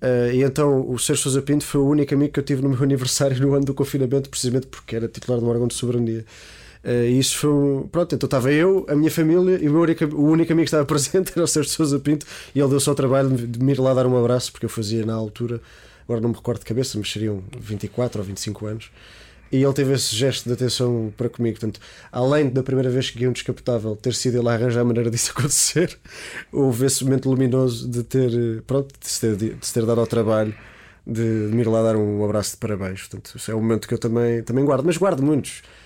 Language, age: Portuguese, 20-39